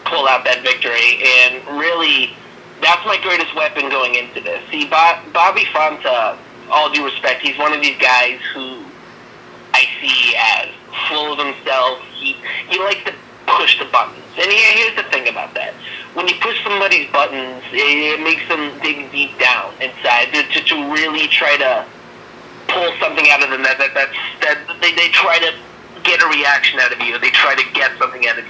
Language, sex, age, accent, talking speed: English, male, 30-49, American, 185 wpm